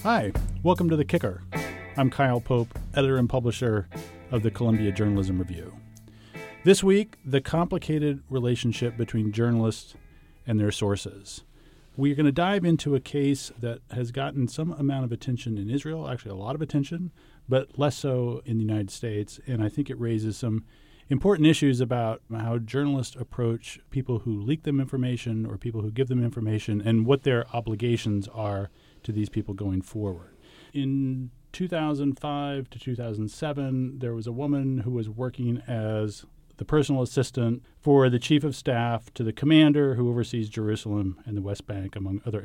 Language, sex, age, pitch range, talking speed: English, male, 40-59, 110-140 Hz, 170 wpm